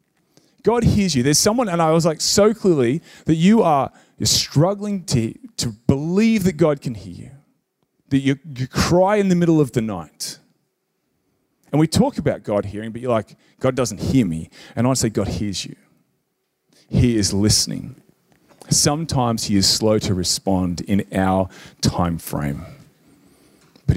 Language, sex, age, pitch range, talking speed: English, male, 30-49, 110-160 Hz, 170 wpm